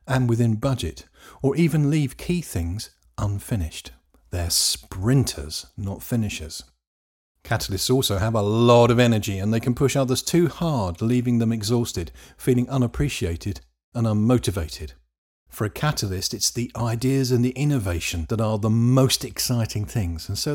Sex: male